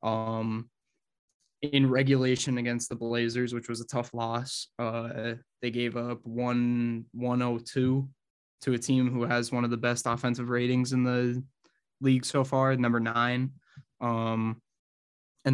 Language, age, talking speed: English, 10-29, 140 wpm